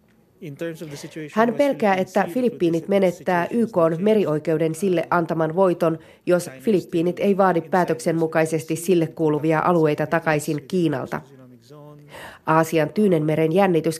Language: Finnish